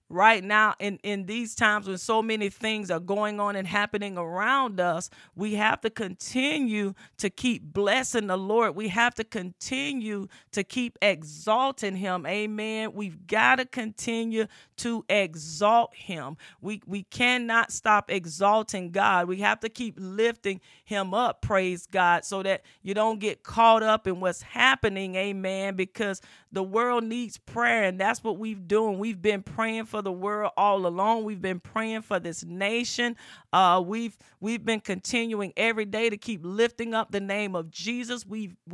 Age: 40-59